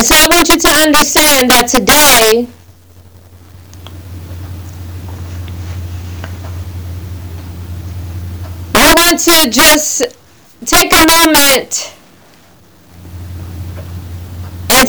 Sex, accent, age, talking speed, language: female, American, 40-59, 70 wpm, English